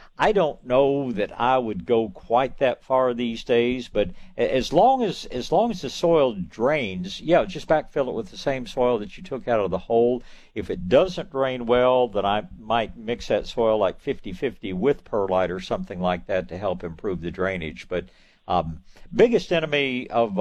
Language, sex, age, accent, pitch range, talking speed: English, male, 60-79, American, 95-125 Hz, 195 wpm